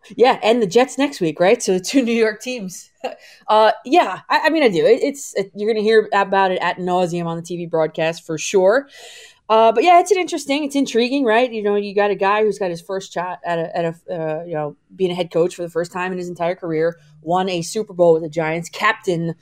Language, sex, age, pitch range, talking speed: English, female, 20-39, 170-215 Hz, 260 wpm